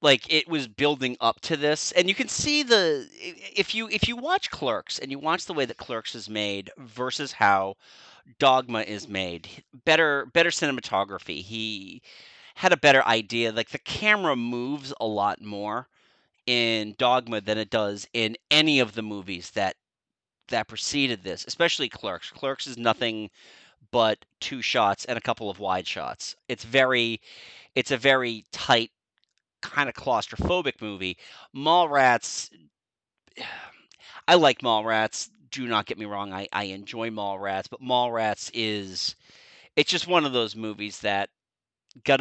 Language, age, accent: English, 30-49, American